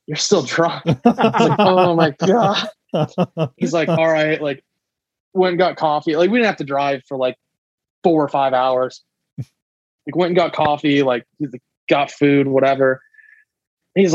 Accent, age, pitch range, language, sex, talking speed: American, 20-39, 140-170 Hz, English, male, 175 wpm